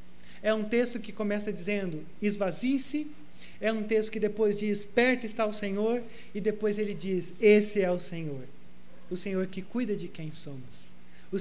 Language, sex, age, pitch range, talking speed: Portuguese, male, 30-49, 160-220 Hz, 175 wpm